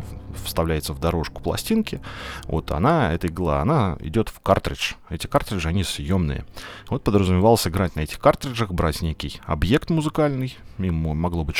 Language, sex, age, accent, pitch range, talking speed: Russian, male, 30-49, native, 80-105 Hz, 150 wpm